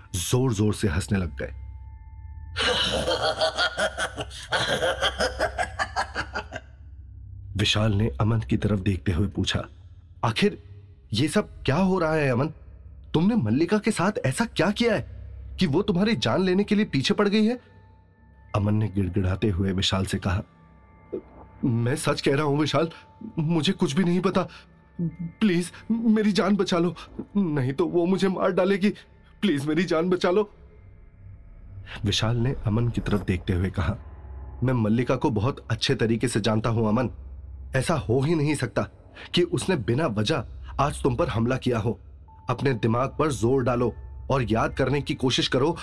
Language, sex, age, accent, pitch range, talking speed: Hindi, male, 30-49, native, 95-155 Hz, 155 wpm